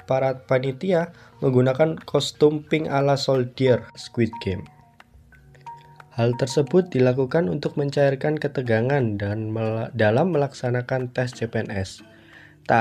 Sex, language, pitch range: male, Indonesian, 115-140 Hz